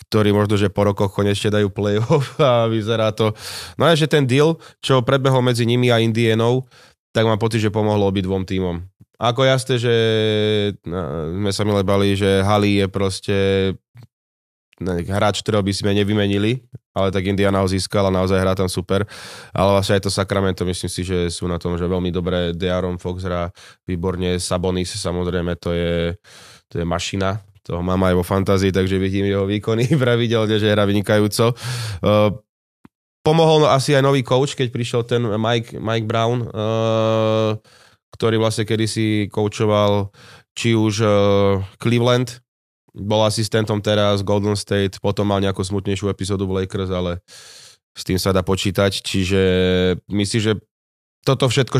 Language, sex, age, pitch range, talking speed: Slovak, male, 20-39, 95-115 Hz, 155 wpm